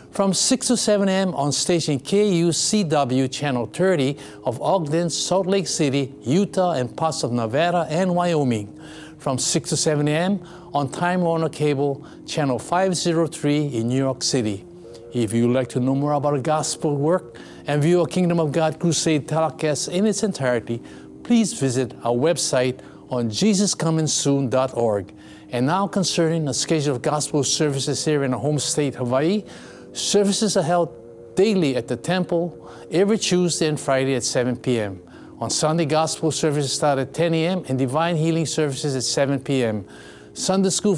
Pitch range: 130-170 Hz